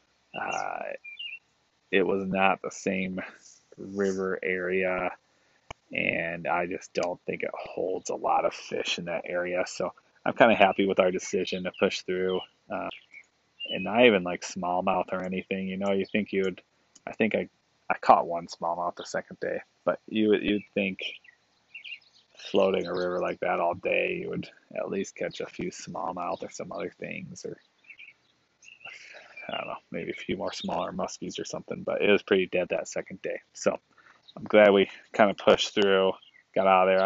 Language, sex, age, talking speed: English, male, 20-39, 180 wpm